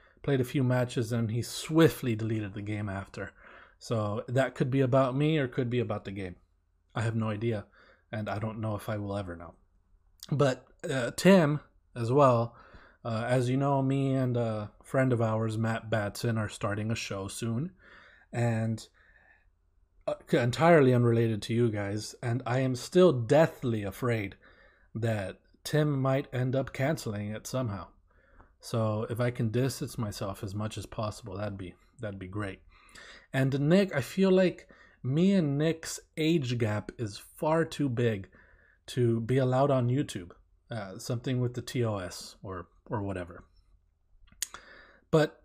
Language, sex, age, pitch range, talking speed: English, male, 30-49, 95-135 Hz, 160 wpm